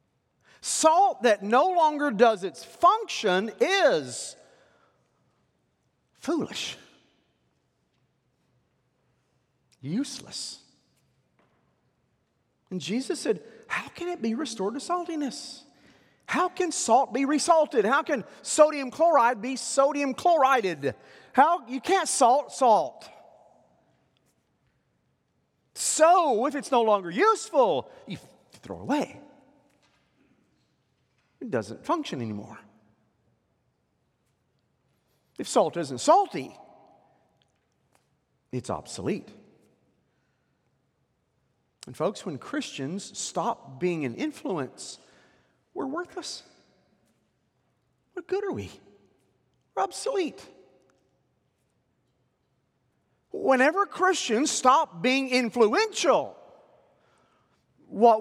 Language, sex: English, male